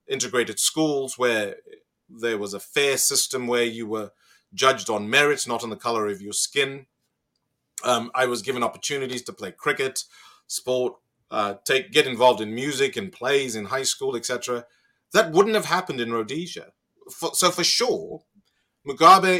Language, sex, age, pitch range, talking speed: English, male, 30-49, 115-155 Hz, 165 wpm